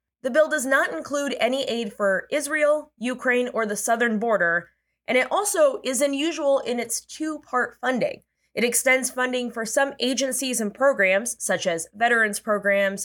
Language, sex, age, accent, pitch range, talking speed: English, female, 20-39, American, 200-285 Hz, 160 wpm